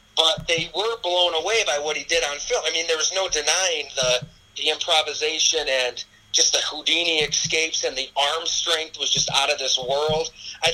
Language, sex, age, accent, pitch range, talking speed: English, male, 30-49, American, 140-195 Hz, 200 wpm